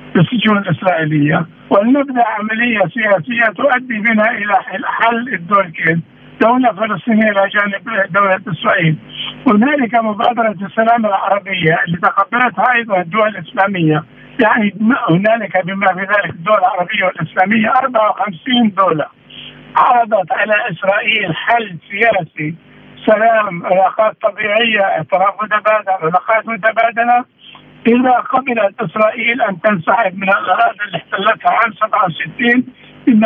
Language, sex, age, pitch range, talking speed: Arabic, male, 60-79, 195-240 Hz, 105 wpm